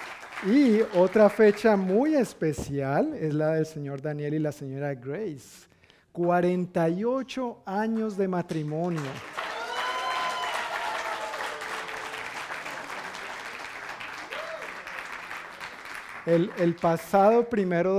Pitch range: 160-200 Hz